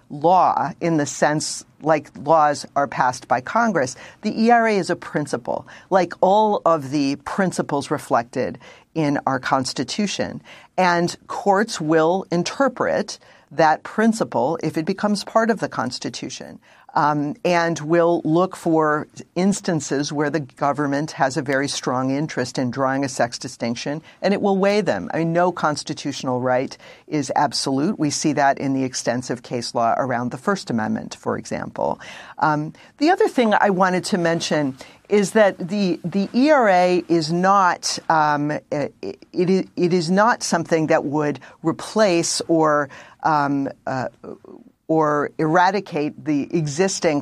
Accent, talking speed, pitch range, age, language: American, 145 wpm, 145-185 Hz, 50-69, English